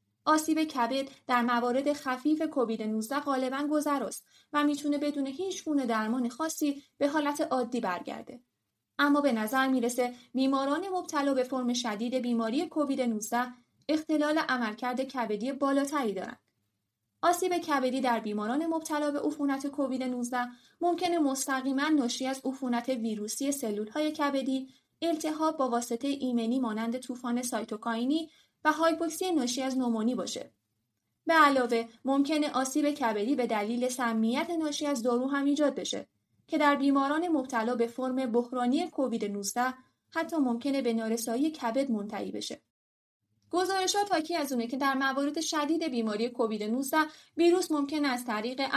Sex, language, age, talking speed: female, Persian, 30-49, 140 wpm